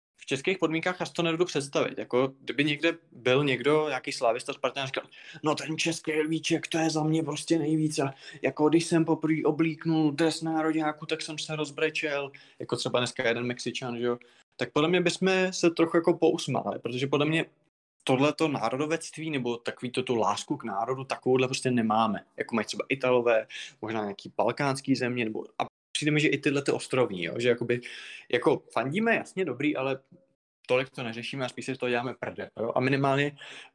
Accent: native